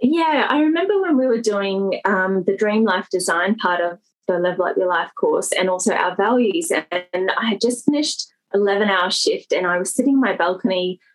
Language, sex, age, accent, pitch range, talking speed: English, female, 20-39, Australian, 190-265 Hz, 210 wpm